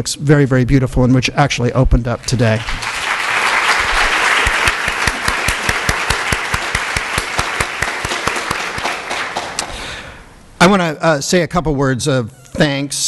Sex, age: male, 50-69